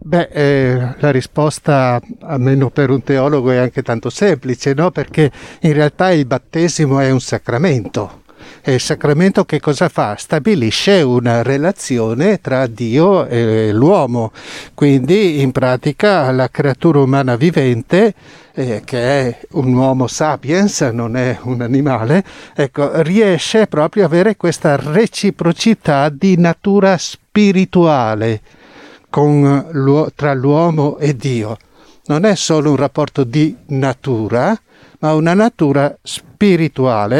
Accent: native